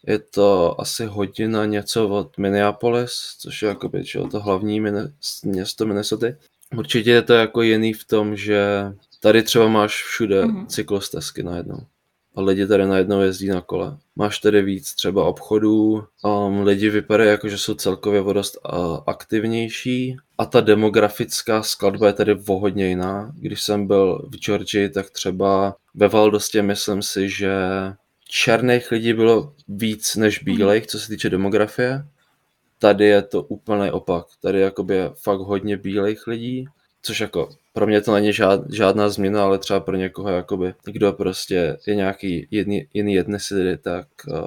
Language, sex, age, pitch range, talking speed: Czech, male, 20-39, 100-110 Hz, 155 wpm